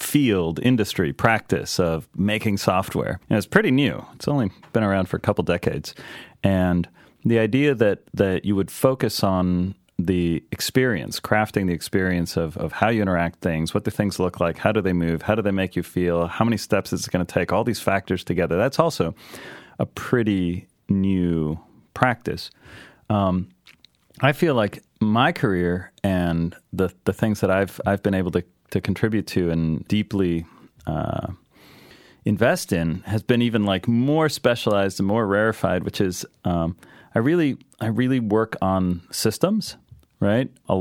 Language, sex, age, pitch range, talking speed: English, male, 30-49, 90-115 Hz, 170 wpm